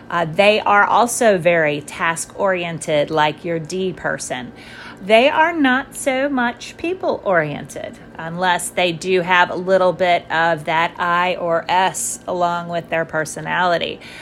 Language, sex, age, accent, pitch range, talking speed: English, female, 30-49, American, 170-215 Hz, 135 wpm